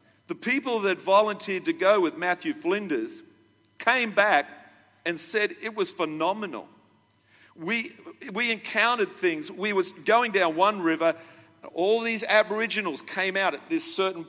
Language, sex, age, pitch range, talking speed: English, male, 50-69, 150-220 Hz, 145 wpm